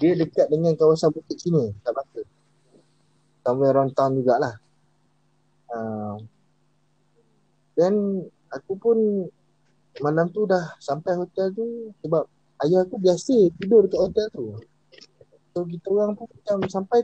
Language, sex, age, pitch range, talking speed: Malay, male, 20-39, 125-170 Hz, 125 wpm